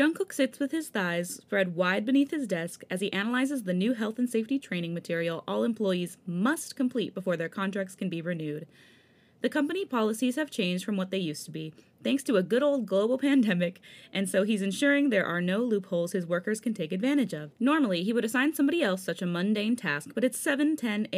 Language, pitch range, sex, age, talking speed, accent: English, 180-255 Hz, female, 20-39, 210 wpm, American